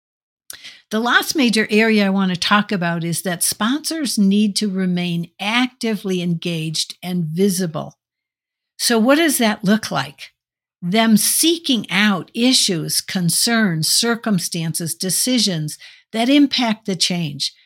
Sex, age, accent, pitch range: female, 60-79, American, 175-220 Hz